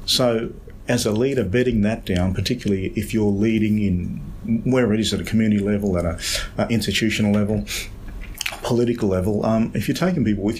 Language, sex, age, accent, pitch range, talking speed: English, male, 40-59, Australian, 100-110 Hz, 175 wpm